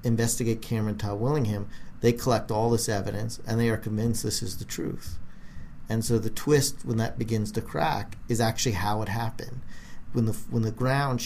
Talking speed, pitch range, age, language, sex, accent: 190 wpm, 105-120 Hz, 50-69, English, male, American